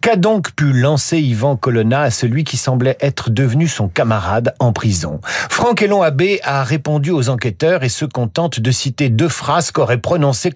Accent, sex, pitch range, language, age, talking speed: French, male, 125-185 Hz, French, 50-69, 180 wpm